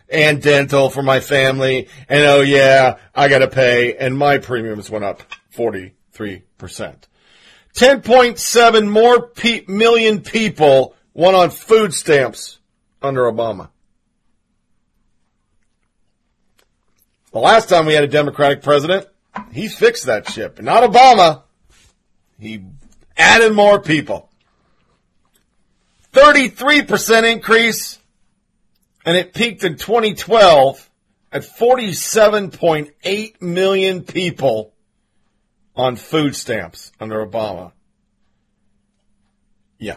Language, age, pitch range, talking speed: English, 40-59, 135-220 Hz, 95 wpm